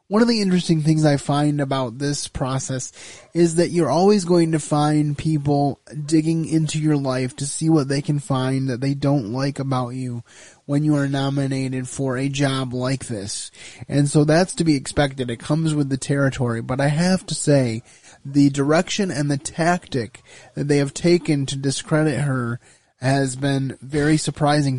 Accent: American